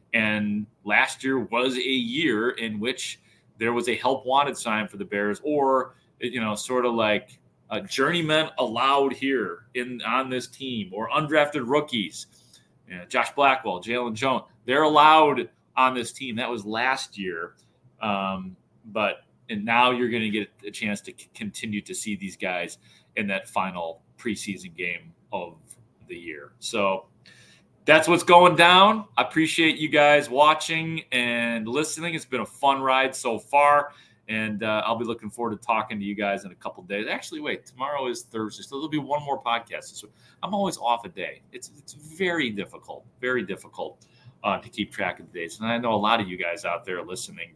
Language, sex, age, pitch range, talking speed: English, male, 30-49, 110-145 Hz, 190 wpm